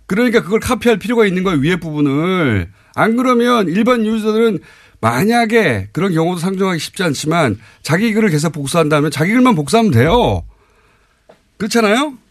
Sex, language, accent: male, Korean, native